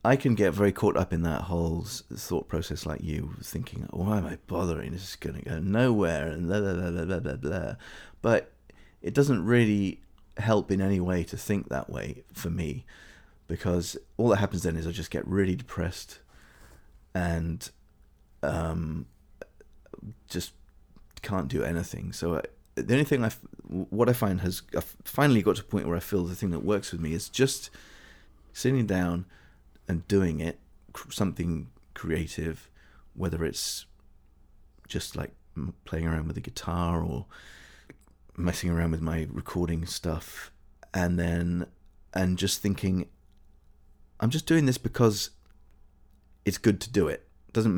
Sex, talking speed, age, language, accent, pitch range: male, 165 wpm, 30-49, English, British, 75-95 Hz